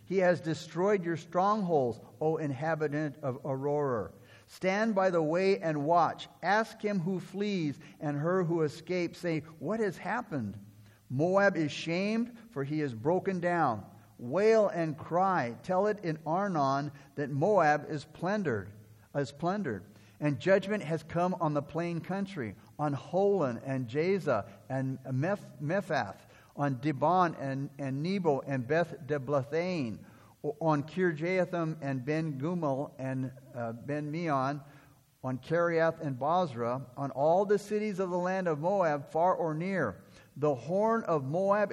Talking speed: 140 wpm